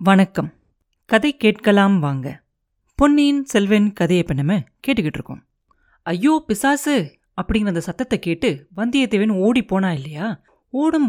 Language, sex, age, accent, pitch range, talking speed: Tamil, female, 30-49, native, 175-240 Hz, 115 wpm